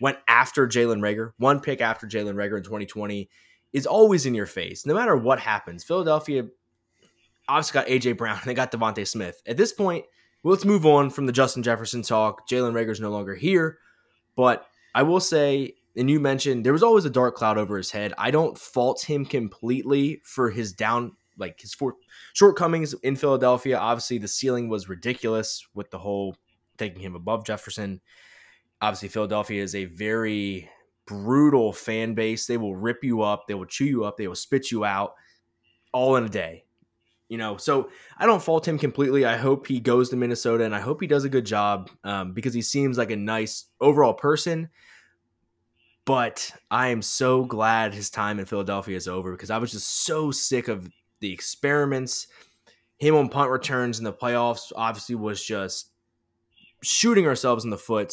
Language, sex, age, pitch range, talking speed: English, male, 20-39, 105-135 Hz, 190 wpm